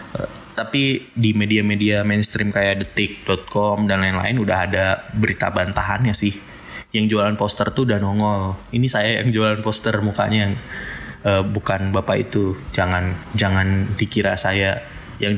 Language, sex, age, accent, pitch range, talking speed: Indonesian, male, 20-39, native, 95-110 Hz, 135 wpm